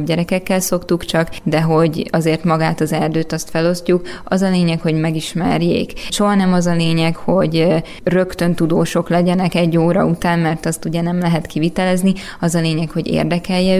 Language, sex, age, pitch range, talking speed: Hungarian, female, 20-39, 165-180 Hz, 170 wpm